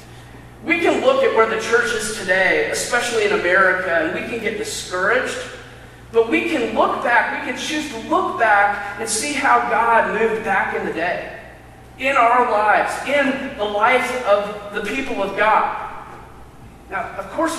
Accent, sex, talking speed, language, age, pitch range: American, male, 175 wpm, English, 40-59, 190-285 Hz